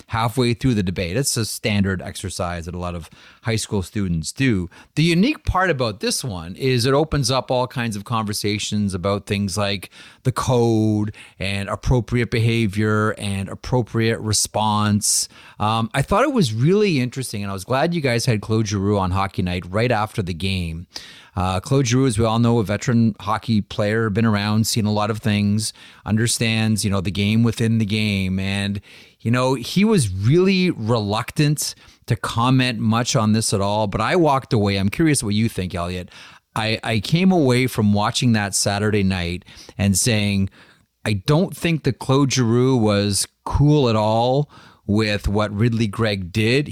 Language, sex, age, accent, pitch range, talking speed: English, male, 30-49, American, 100-125 Hz, 180 wpm